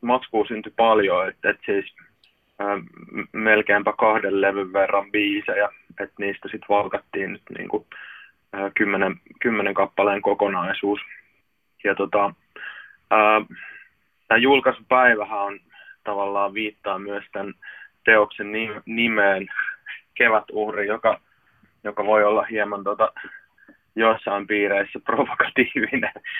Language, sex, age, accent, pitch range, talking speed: Finnish, male, 20-39, native, 100-110 Hz, 105 wpm